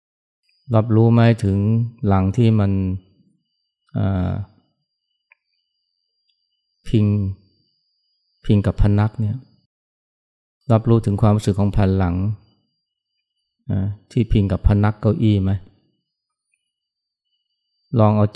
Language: Thai